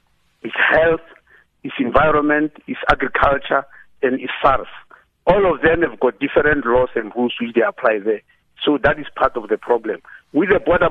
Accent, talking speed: South African, 175 wpm